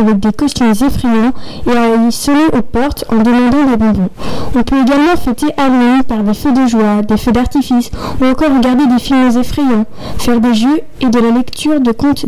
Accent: French